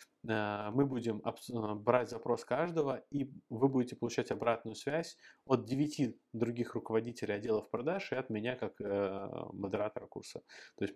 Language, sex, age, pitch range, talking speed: Russian, male, 20-39, 100-125 Hz, 135 wpm